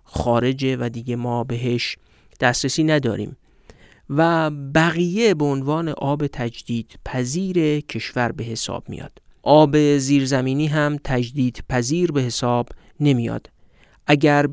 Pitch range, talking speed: 120-155 Hz, 110 wpm